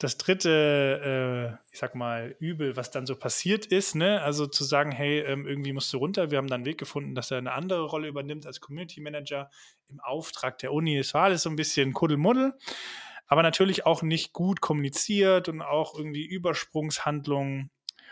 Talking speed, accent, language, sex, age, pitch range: 180 wpm, German, German, male, 20-39, 135-165 Hz